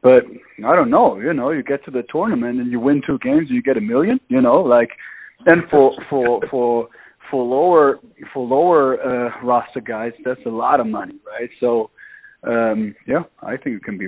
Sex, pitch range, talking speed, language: male, 115-150 Hz, 210 wpm, English